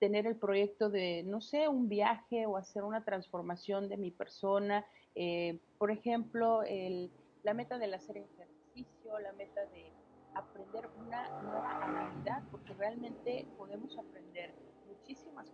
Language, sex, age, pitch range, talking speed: Spanish, female, 40-59, 195-230 Hz, 140 wpm